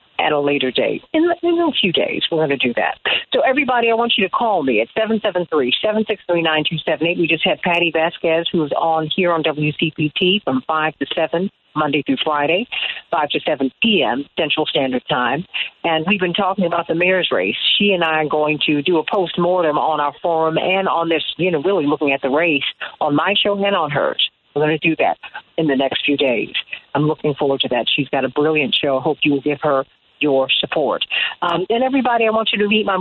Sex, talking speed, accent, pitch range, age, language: female, 225 wpm, American, 150-215 Hz, 50-69, English